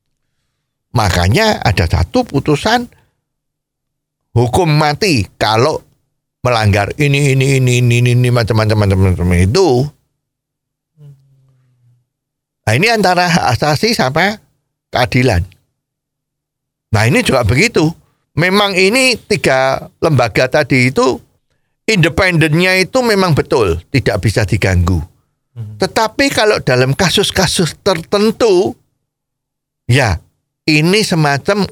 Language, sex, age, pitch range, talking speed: Indonesian, male, 50-69, 125-170 Hz, 90 wpm